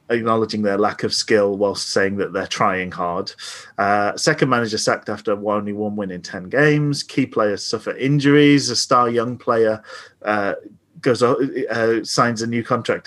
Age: 30-49